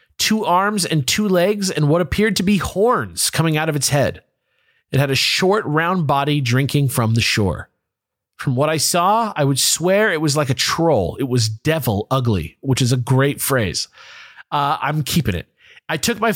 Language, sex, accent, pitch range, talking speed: English, male, American, 130-185 Hz, 200 wpm